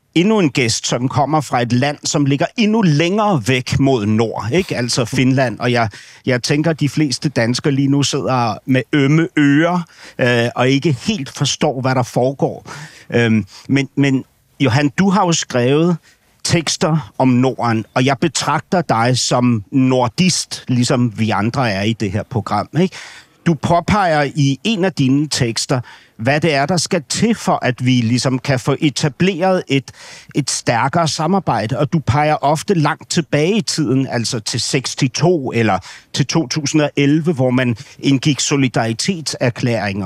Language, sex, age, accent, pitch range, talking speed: Danish, male, 60-79, native, 125-165 Hz, 160 wpm